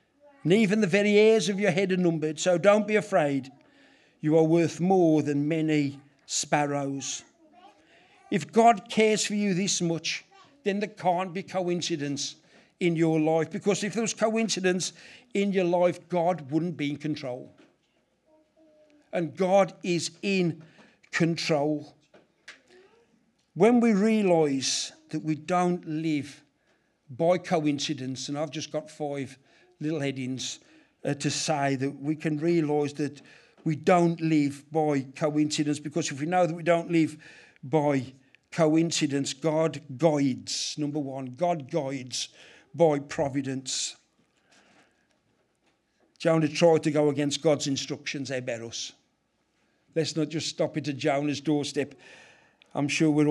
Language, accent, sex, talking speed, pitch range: English, British, male, 135 wpm, 145-180 Hz